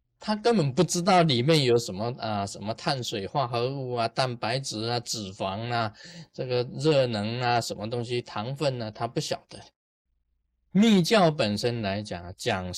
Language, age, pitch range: Chinese, 20-39, 95-140 Hz